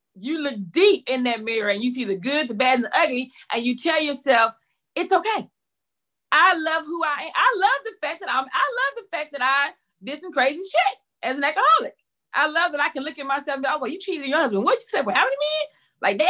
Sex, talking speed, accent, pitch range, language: female, 265 wpm, American, 215-320 Hz, English